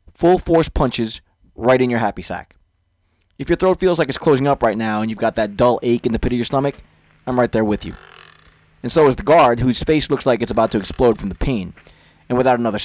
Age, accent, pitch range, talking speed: 20-39, American, 100-135 Hz, 250 wpm